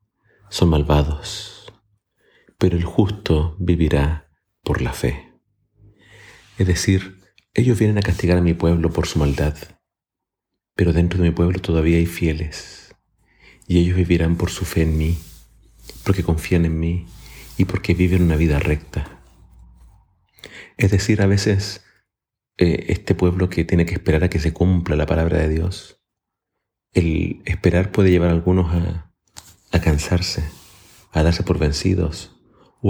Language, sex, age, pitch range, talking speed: Spanish, male, 40-59, 80-95 Hz, 145 wpm